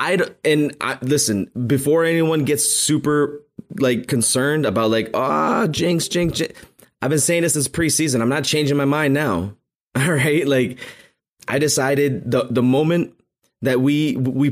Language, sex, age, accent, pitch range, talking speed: English, male, 20-39, American, 125-155 Hz, 165 wpm